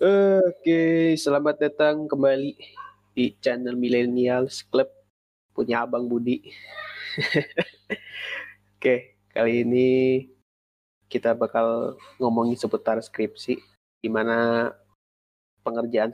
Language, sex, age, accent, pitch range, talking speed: Indonesian, male, 20-39, native, 110-130 Hz, 85 wpm